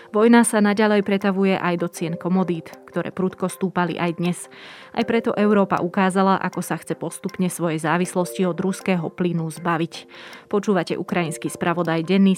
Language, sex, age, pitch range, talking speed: Slovak, female, 20-39, 170-190 Hz, 150 wpm